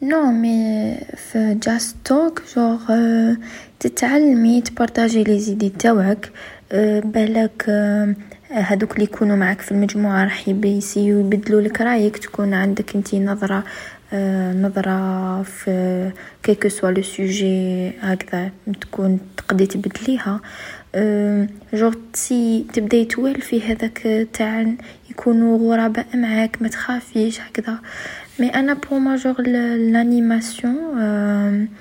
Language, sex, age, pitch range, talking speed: Arabic, female, 20-39, 200-230 Hz, 95 wpm